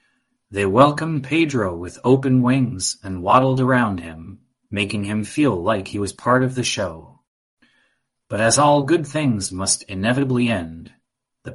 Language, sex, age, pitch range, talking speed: English, male, 30-49, 100-130 Hz, 150 wpm